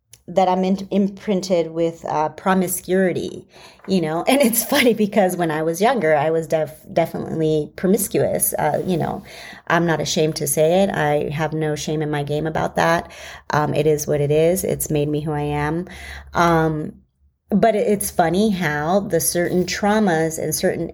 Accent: American